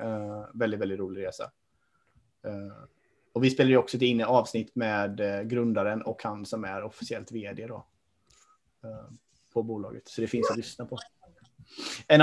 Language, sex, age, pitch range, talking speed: Swedish, male, 20-39, 120-155 Hz, 165 wpm